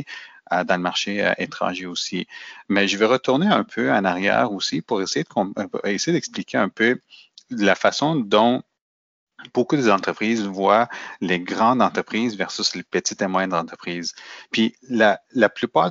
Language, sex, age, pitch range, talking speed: French, male, 30-49, 95-105 Hz, 145 wpm